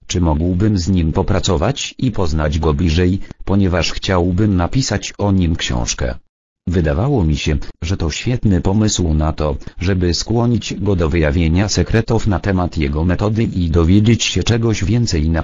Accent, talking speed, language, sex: Polish, 155 wpm, English, male